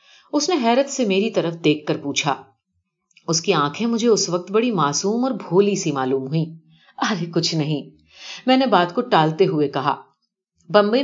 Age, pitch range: 40-59, 160-230 Hz